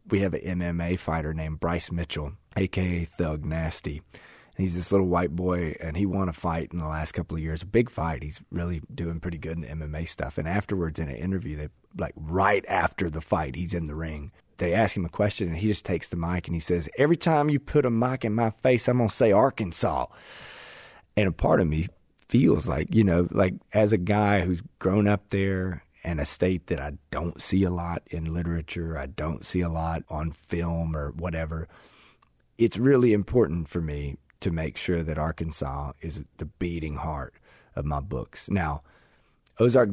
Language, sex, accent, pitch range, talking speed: English, male, American, 85-105 Hz, 205 wpm